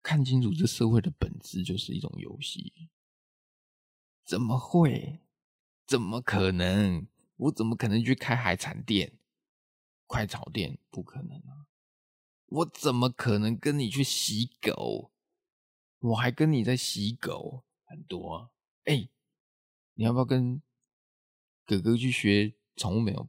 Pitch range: 105-150 Hz